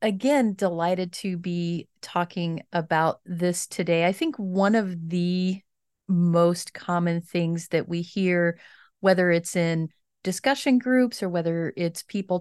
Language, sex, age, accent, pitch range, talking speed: English, female, 30-49, American, 170-190 Hz, 135 wpm